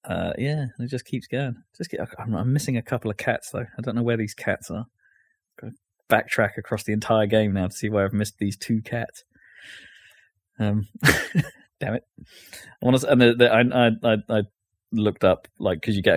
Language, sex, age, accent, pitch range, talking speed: English, male, 20-39, British, 95-120 Hz, 215 wpm